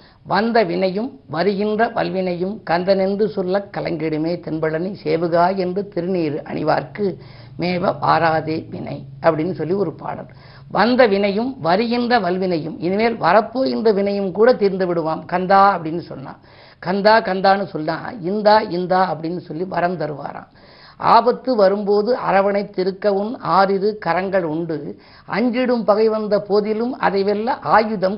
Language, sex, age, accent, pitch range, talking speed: Tamil, female, 50-69, native, 170-210 Hz, 115 wpm